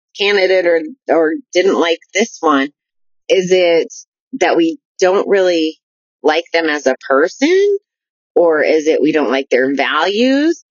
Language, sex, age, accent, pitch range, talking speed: English, female, 30-49, American, 150-215 Hz, 145 wpm